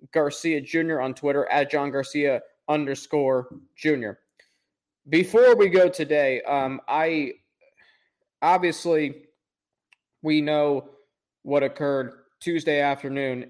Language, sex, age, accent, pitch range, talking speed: English, male, 20-39, American, 135-150 Hz, 100 wpm